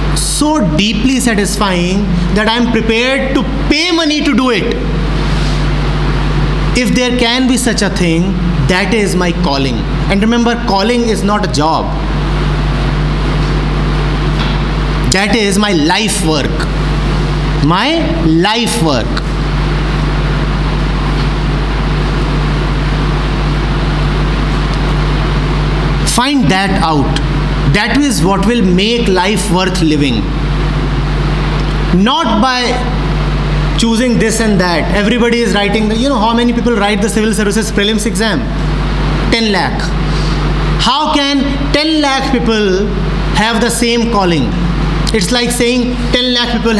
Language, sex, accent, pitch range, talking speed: English, male, Indian, 160-235 Hz, 110 wpm